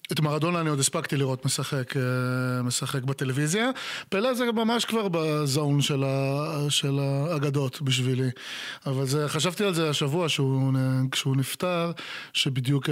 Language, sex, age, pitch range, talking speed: English, male, 20-39, 140-165 Hz, 130 wpm